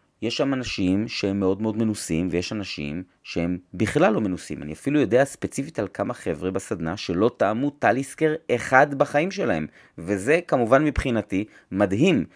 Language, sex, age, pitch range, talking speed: Hebrew, male, 30-49, 95-130 Hz, 150 wpm